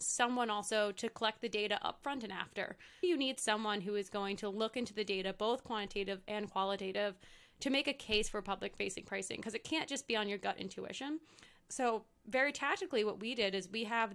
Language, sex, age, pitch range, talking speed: English, female, 20-39, 205-245 Hz, 210 wpm